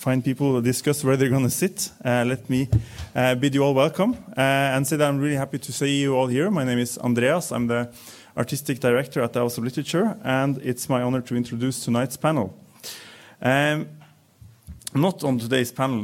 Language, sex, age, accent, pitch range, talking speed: English, male, 30-49, Norwegian, 115-140 Hz, 200 wpm